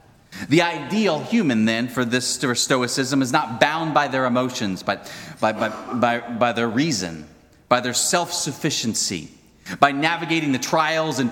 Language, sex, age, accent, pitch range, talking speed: English, male, 30-49, American, 95-130 Hz, 150 wpm